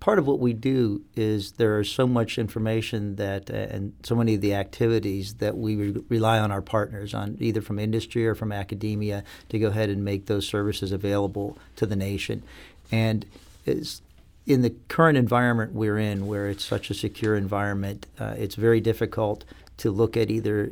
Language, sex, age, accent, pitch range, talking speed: English, male, 40-59, American, 100-115 Hz, 190 wpm